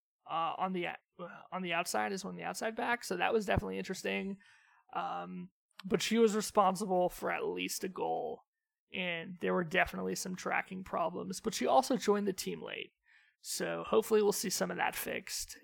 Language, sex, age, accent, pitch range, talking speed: English, male, 30-49, American, 170-215 Hz, 190 wpm